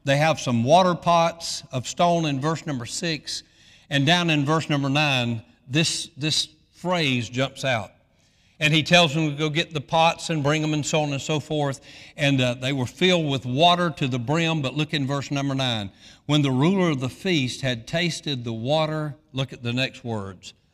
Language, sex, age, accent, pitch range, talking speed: English, male, 60-79, American, 120-175 Hz, 205 wpm